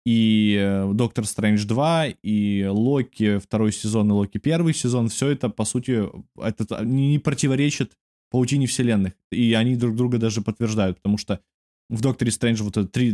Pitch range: 105-130 Hz